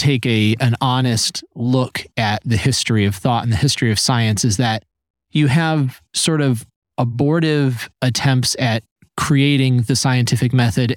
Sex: male